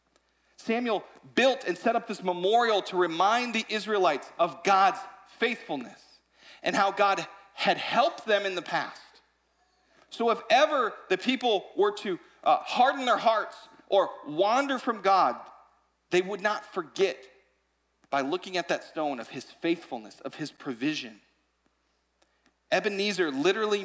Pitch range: 175-250 Hz